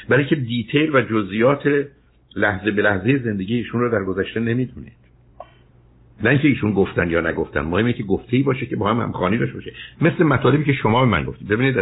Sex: male